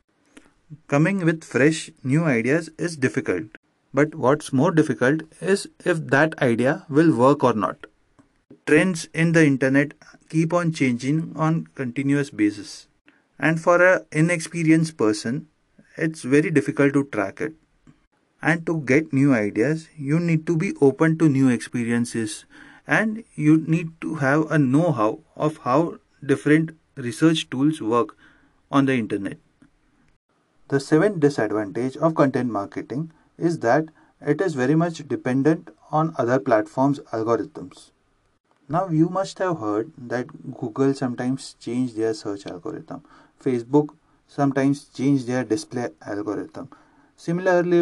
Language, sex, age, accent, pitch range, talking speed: Hindi, male, 30-49, native, 130-160 Hz, 130 wpm